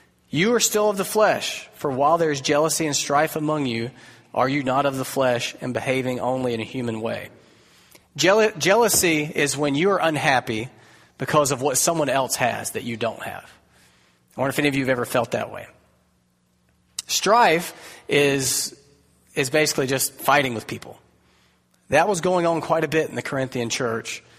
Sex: male